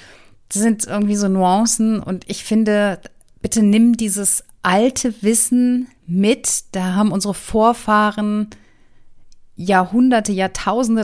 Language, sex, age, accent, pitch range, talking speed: German, female, 30-49, German, 175-210 Hz, 110 wpm